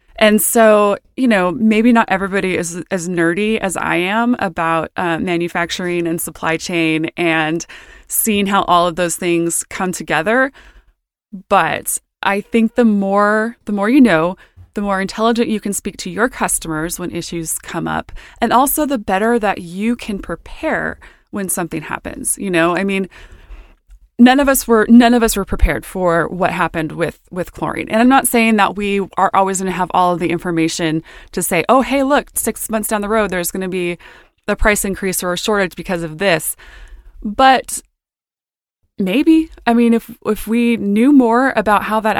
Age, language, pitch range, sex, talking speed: 20-39, English, 175-225 Hz, female, 185 wpm